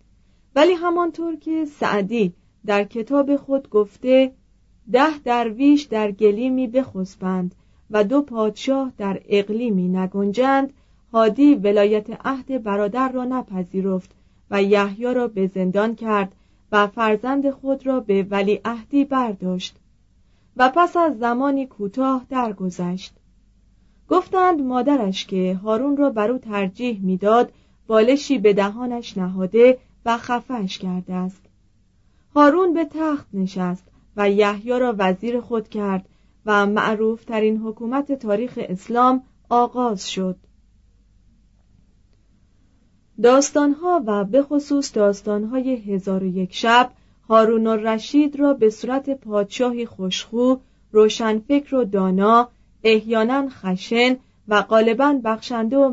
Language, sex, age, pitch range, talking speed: Persian, female, 30-49, 195-260 Hz, 115 wpm